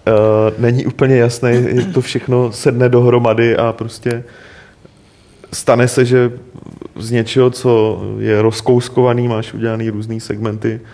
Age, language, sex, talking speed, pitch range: 30-49, Czech, male, 120 wpm, 105-120 Hz